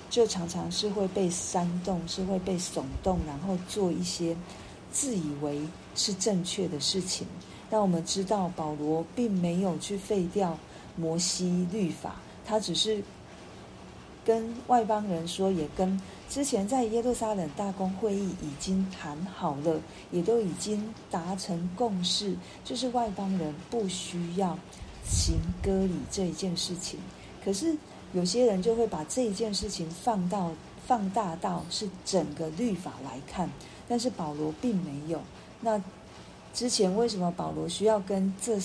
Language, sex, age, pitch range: Chinese, female, 40-59, 165-205 Hz